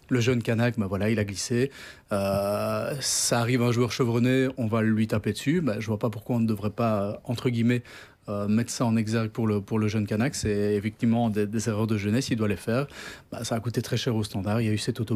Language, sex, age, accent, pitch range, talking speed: French, male, 30-49, French, 105-130 Hz, 260 wpm